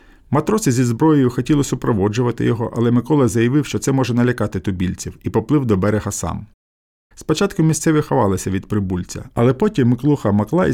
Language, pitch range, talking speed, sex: Ukrainian, 100-140 Hz, 155 wpm, male